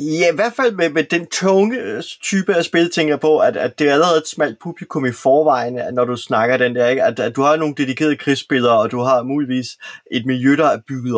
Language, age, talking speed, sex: Danish, 20-39, 245 wpm, male